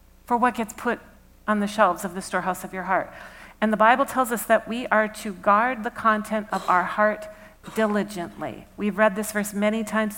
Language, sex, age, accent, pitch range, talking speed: English, female, 50-69, American, 195-230 Hz, 205 wpm